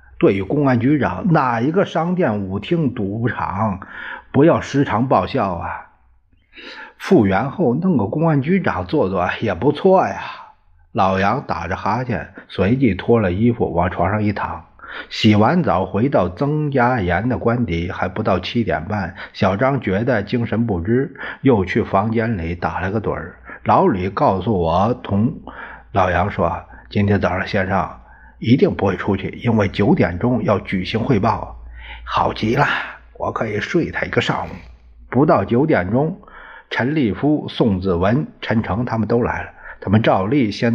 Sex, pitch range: male, 95-120 Hz